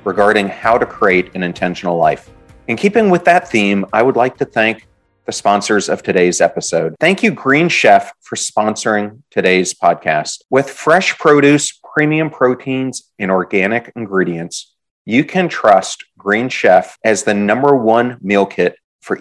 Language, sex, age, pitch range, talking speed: English, male, 40-59, 100-145 Hz, 155 wpm